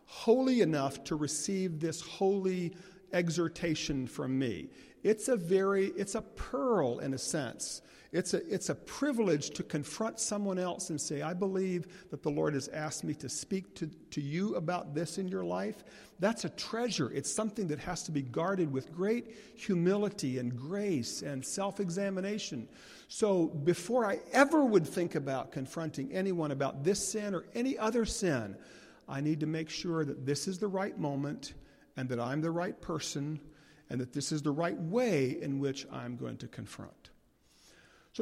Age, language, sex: 50-69, English, male